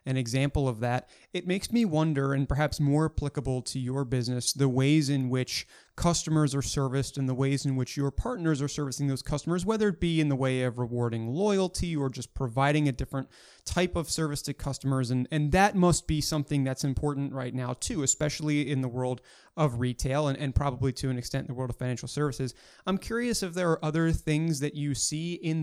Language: English